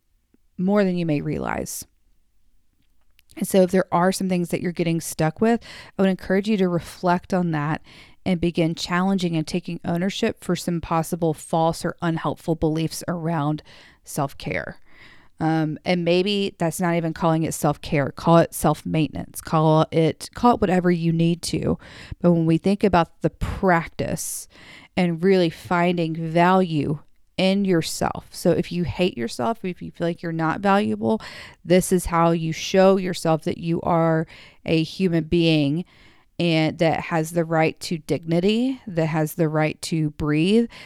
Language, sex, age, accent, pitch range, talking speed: English, female, 40-59, American, 155-175 Hz, 165 wpm